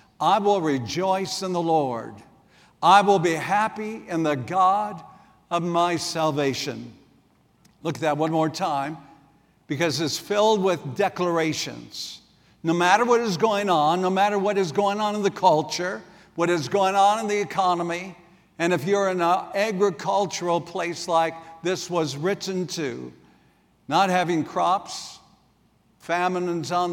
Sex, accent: male, American